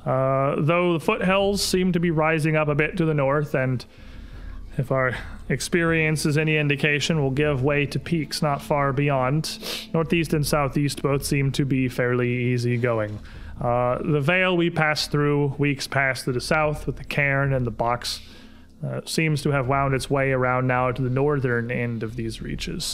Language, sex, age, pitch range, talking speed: English, male, 30-49, 125-155 Hz, 190 wpm